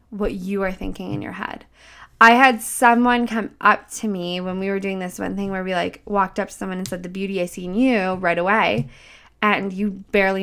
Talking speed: 230 wpm